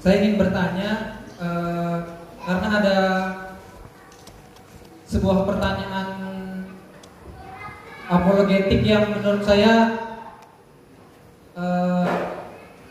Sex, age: male, 20-39